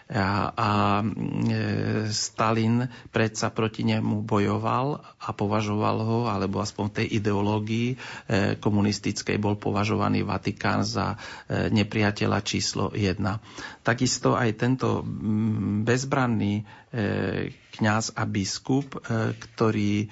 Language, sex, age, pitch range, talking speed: Slovak, male, 40-59, 105-115 Hz, 105 wpm